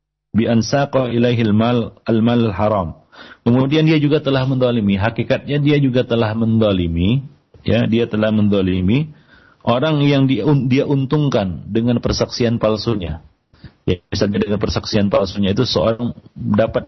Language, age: Malay, 40-59